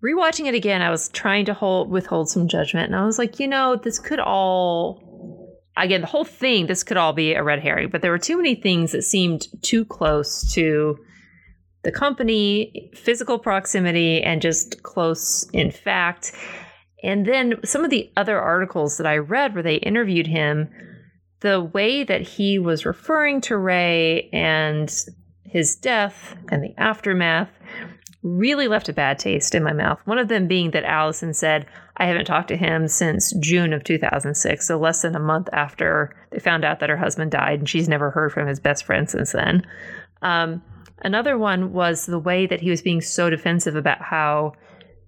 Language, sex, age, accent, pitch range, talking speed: English, female, 30-49, American, 155-215 Hz, 185 wpm